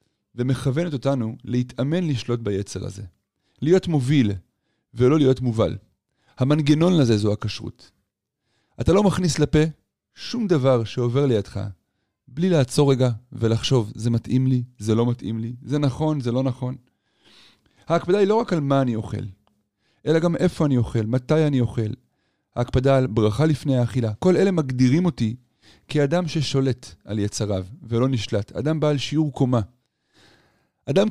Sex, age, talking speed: male, 30-49, 145 wpm